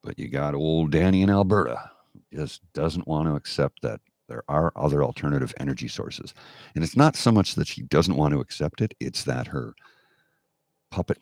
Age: 50-69